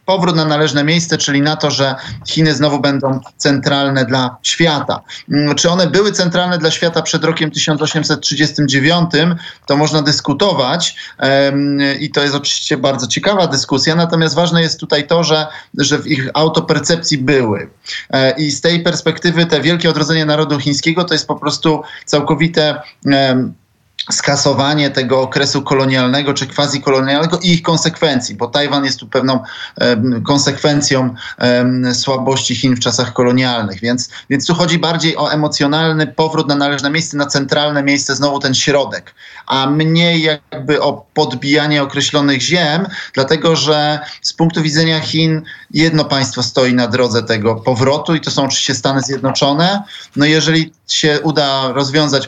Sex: male